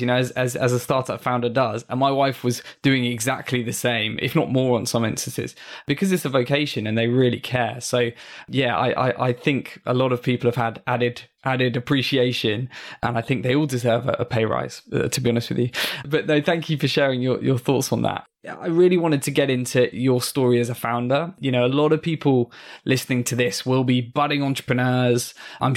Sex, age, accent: male, 10-29, British